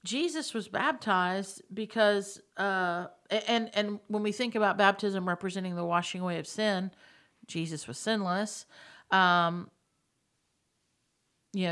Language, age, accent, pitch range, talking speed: English, 50-69, American, 180-220 Hz, 120 wpm